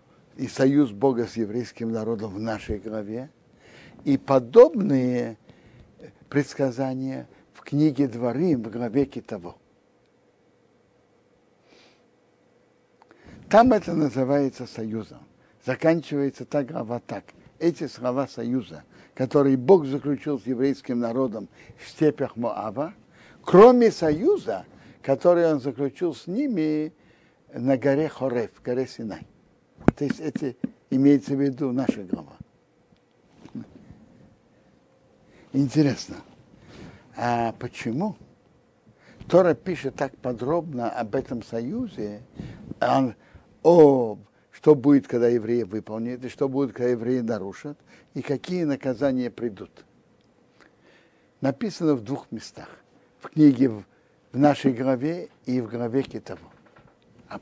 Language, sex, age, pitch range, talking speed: Russian, male, 60-79, 120-150 Hz, 105 wpm